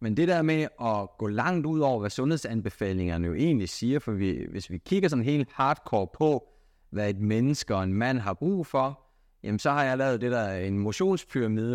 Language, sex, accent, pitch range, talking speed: Danish, male, native, 105-155 Hz, 210 wpm